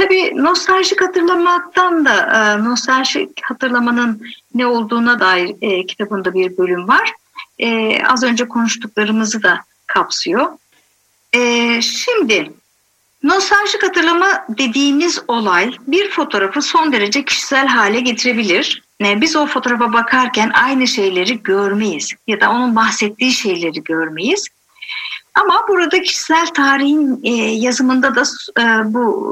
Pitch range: 230-320 Hz